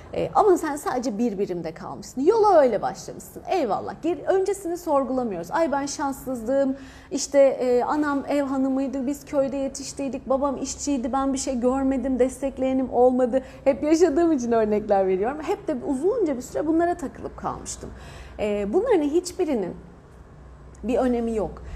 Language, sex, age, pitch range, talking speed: Turkish, female, 30-49, 225-295 Hz, 145 wpm